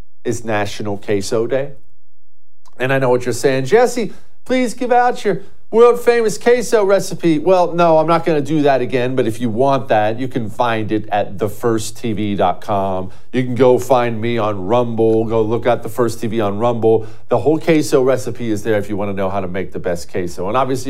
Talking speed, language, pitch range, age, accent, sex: 205 wpm, English, 110-165 Hz, 40-59, American, male